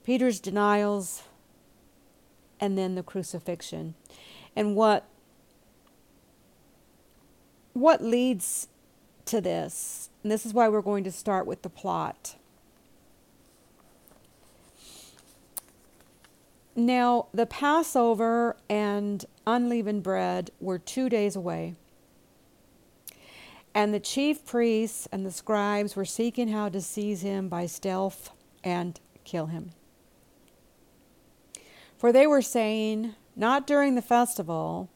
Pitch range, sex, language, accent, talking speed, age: 180-235 Hz, female, English, American, 100 wpm, 50-69